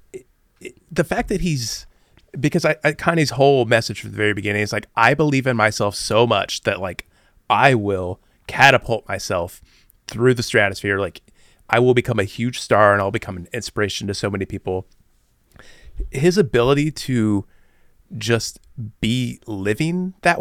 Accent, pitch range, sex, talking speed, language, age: American, 100-130 Hz, male, 160 wpm, English, 30-49